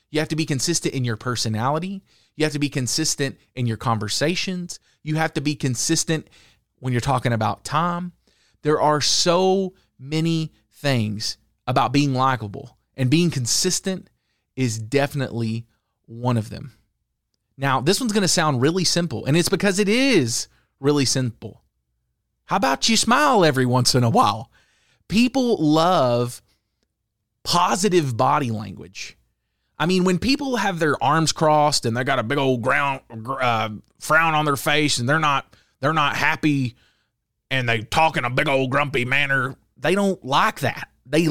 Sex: male